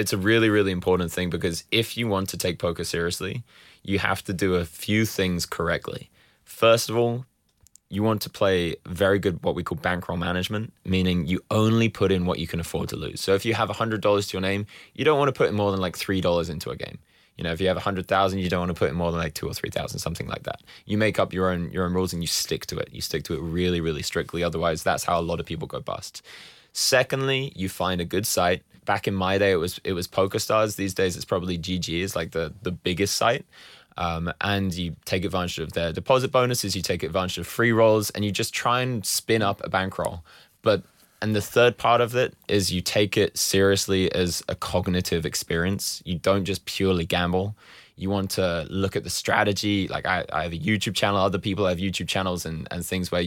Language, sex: English, male